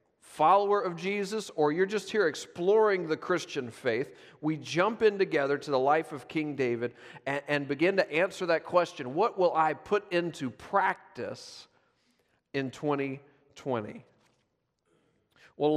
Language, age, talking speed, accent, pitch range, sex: English, 40-59, 140 wpm, American, 155-205 Hz, male